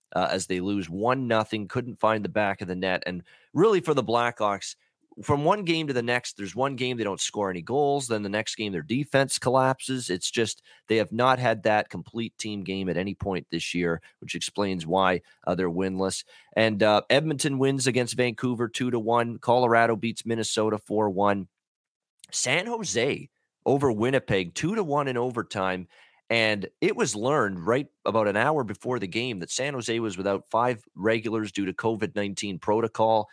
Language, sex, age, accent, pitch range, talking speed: English, male, 30-49, American, 100-125 Hz, 190 wpm